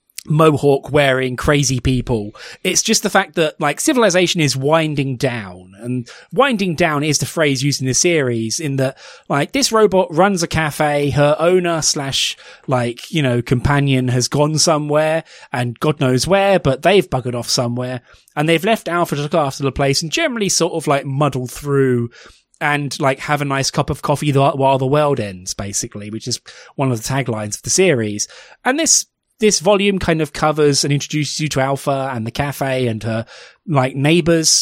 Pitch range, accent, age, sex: 130-155 Hz, British, 20-39, male